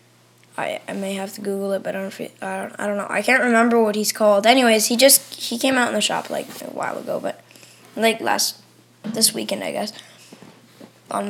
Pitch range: 205-235 Hz